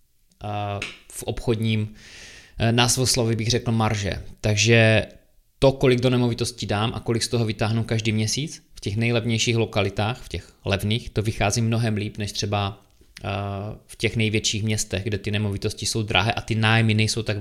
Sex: male